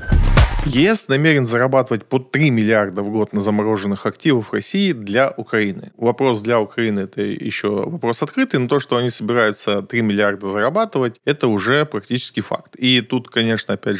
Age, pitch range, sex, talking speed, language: 20-39, 105-135 Hz, male, 160 wpm, Russian